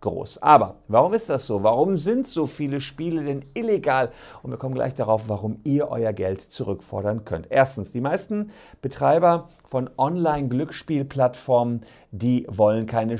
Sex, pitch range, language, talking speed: male, 110-155 Hz, German, 150 wpm